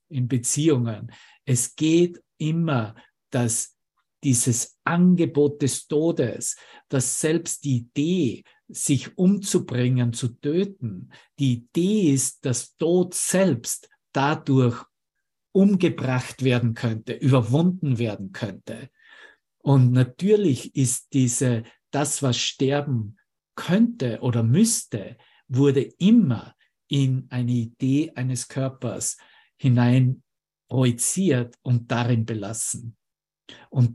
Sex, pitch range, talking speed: male, 125-150 Hz, 95 wpm